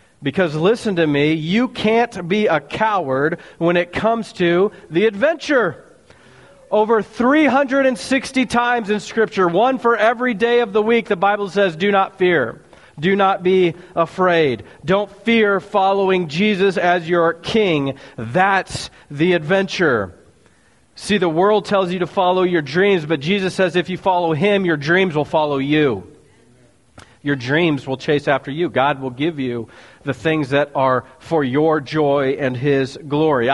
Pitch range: 155-225 Hz